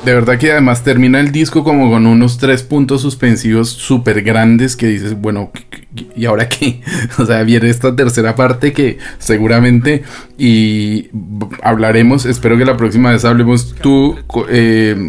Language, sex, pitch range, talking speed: Spanish, male, 115-140 Hz, 155 wpm